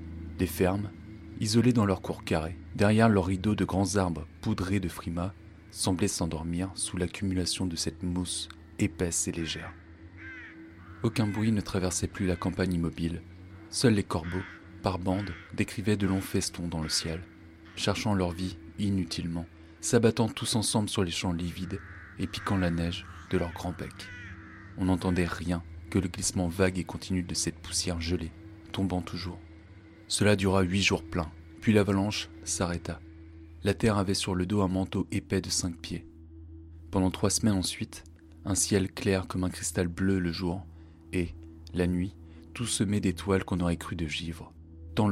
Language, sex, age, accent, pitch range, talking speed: French, male, 30-49, French, 85-100 Hz, 165 wpm